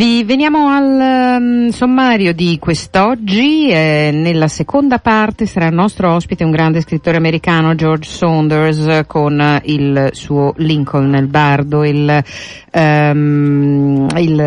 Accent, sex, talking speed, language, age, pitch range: native, female, 115 wpm, Italian, 50-69, 135-170 Hz